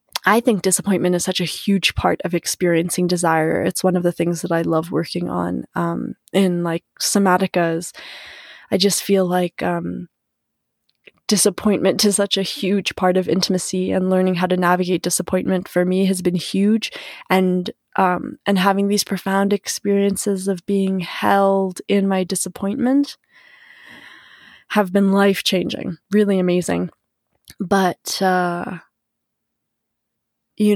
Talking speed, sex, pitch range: 140 wpm, female, 180-205 Hz